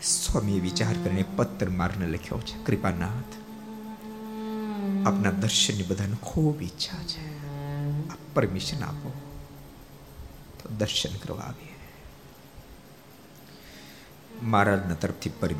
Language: Gujarati